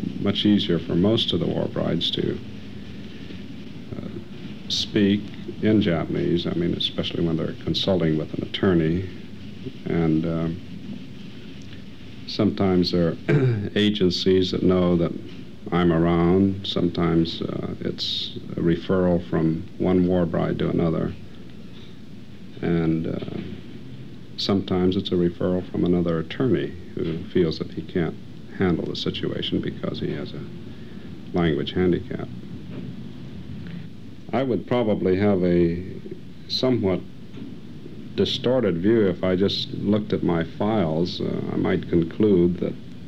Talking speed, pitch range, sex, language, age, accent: 120 wpm, 85-100 Hz, male, English, 60-79, American